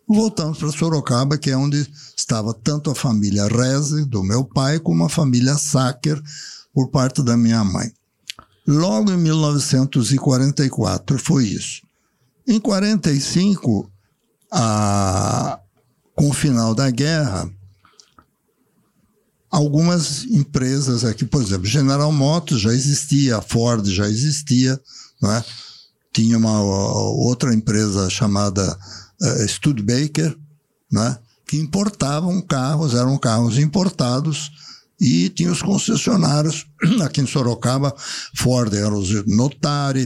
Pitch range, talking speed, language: 115-150 Hz, 110 wpm, Portuguese